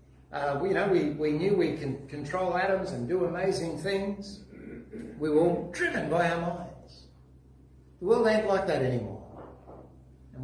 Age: 60-79